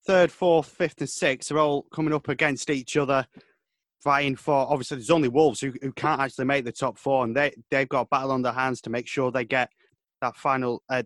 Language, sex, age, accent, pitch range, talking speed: English, male, 20-39, British, 125-160 Hz, 235 wpm